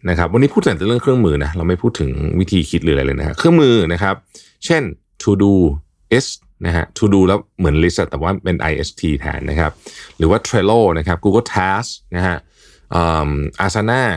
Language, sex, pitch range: Thai, male, 80-105 Hz